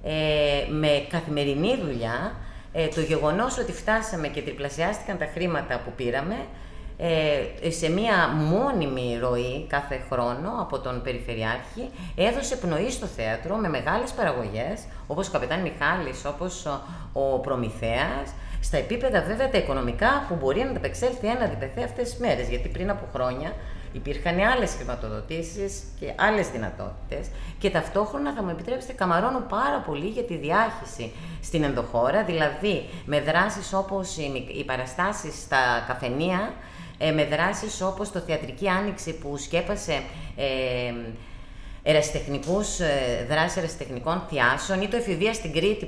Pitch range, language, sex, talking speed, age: 130-180 Hz, Greek, female, 130 wpm, 30-49